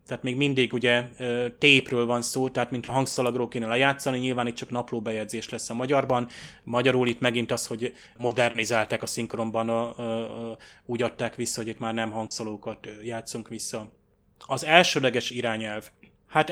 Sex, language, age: male, Hungarian, 20-39